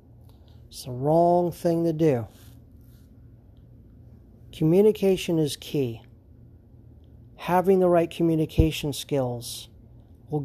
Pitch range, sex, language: 115-165 Hz, male, English